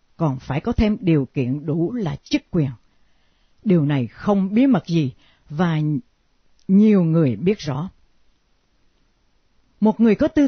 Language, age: Vietnamese, 60-79